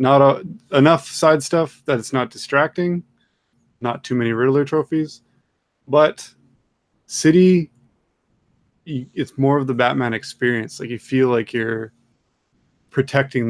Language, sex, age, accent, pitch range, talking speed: English, male, 20-39, American, 115-130 Hz, 125 wpm